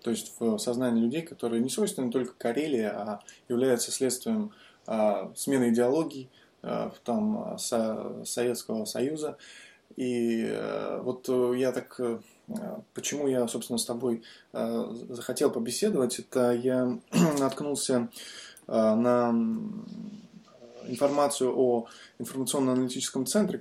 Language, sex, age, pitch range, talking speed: Russian, male, 20-39, 120-160 Hz, 110 wpm